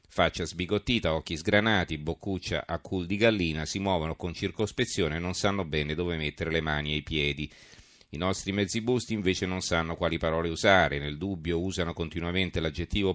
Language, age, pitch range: Italian, 40-59, 80-100 Hz